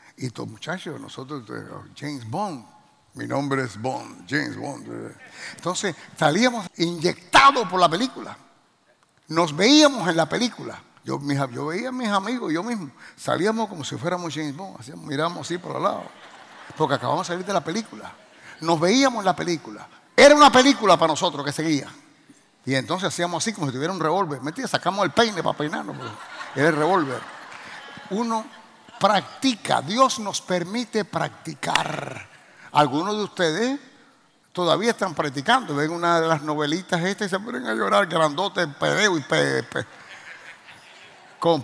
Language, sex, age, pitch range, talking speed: English, male, 60-79, 155-210 Hz, 155 wpm